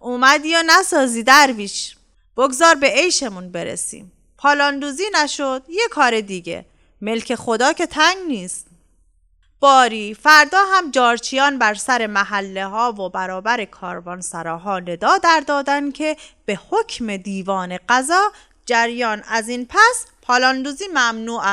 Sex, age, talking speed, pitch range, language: female, 30-49, 125 wpm, 195-290 Hz, Persian